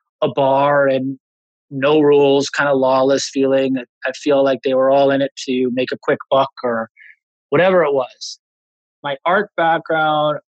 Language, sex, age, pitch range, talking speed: English, male, 20-39, 130-155 Hz, 165 wpm